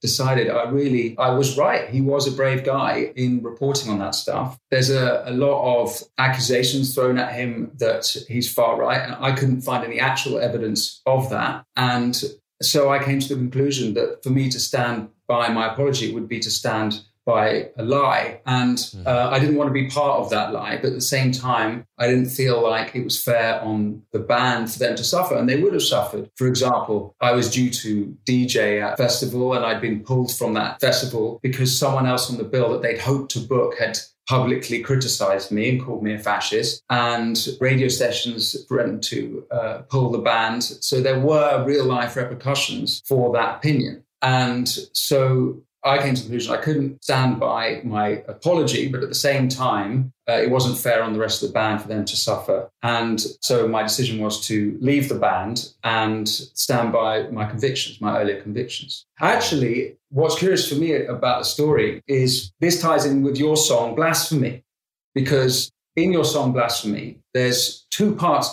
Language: English